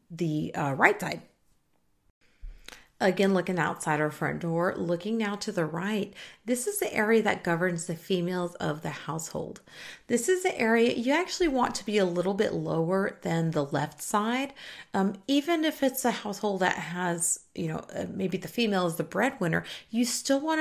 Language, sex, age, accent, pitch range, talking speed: English, female, 40-59, American, 170-230 Hz, 180 wpm